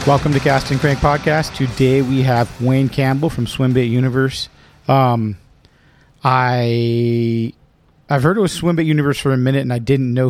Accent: American